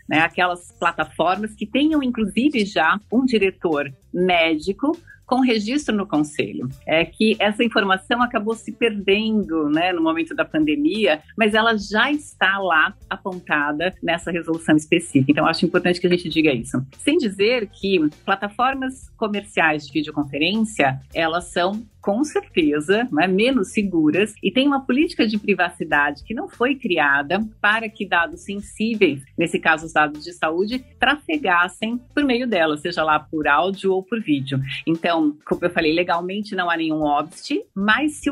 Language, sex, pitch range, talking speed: Portuguese, female, 160-225 Hz, 155 wpm